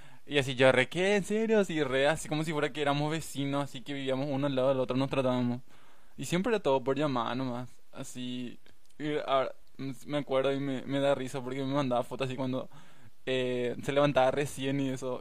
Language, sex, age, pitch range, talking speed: Spanish, male, 20-39, 125-140 Hz, 215 wpm